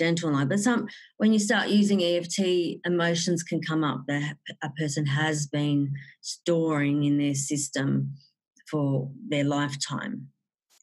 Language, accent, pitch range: English, Australian, 150-185 Hz